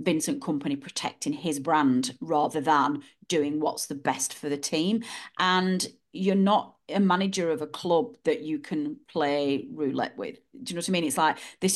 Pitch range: 155-220 Hz